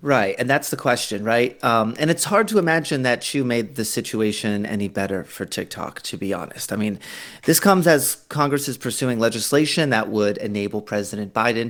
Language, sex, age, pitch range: English, male, 30-49, 110-160 Hz